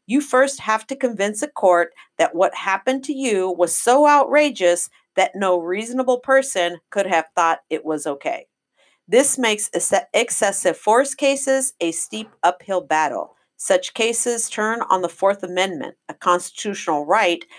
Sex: female